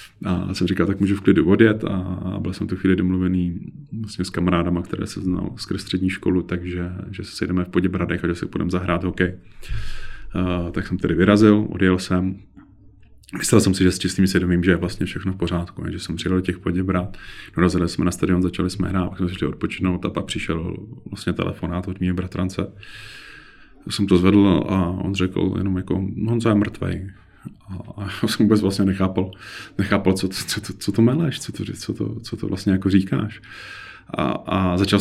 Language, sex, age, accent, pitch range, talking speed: Czech, male, 30-49, native, 90-100 Hz, 195 wpm